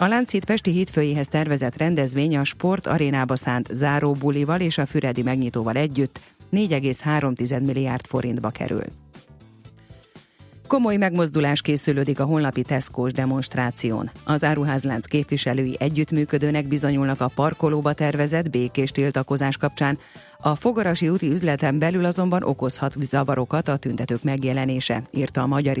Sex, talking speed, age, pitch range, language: female, 120 wpm, 30-49, 130-155 Hz, Hungarian